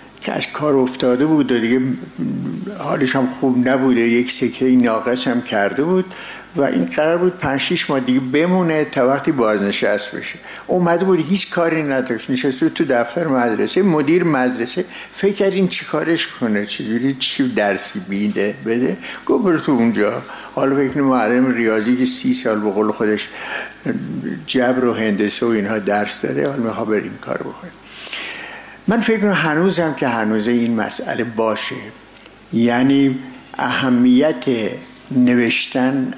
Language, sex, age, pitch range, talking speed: English, male, 60-79, 115-160 Hz, 145 wpm